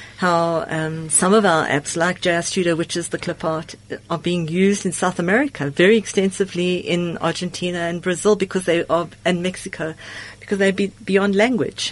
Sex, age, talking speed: female, 50-69, 180 wpm